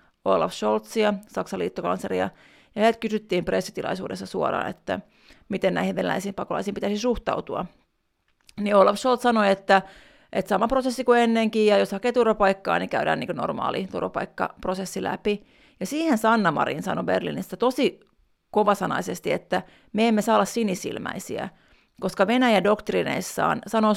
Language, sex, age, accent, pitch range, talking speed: Finnish, female, 30-49, native, 190-230 Hz, 135 wpm